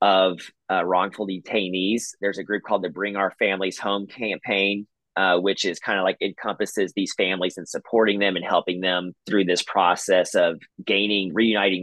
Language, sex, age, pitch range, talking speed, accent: English, male, 30-49, 90-105 Hz, 180 wpm, American